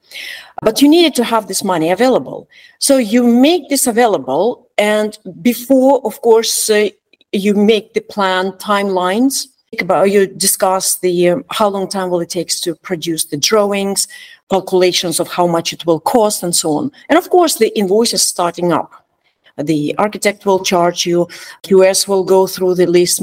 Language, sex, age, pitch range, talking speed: English, female, 50-69, 175-235 Hz, 170 wpm